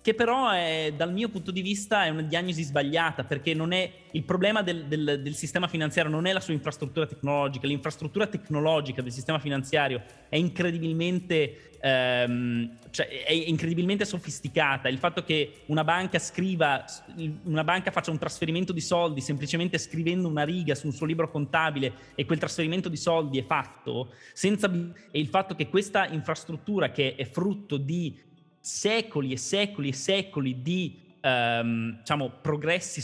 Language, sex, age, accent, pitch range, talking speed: Italian, male, 20-39, native, 140-175 Hz, 160 wpm